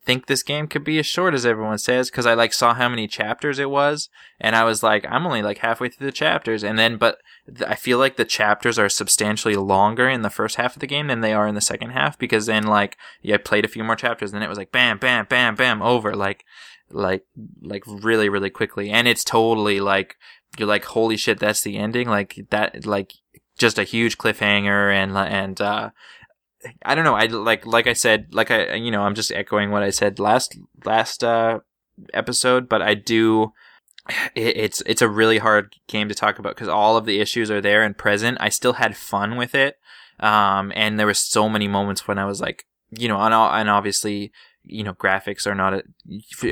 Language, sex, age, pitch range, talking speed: English, male, 20-39, 100-115 Hz, 225 wpm